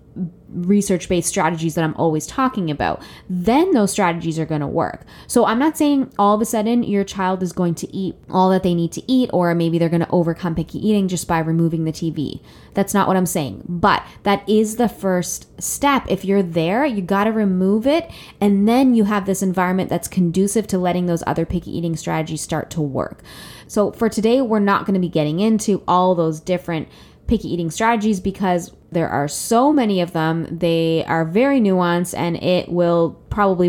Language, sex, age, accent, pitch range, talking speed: English, female, 20-39, American, 170-205 Hz, 205 wpm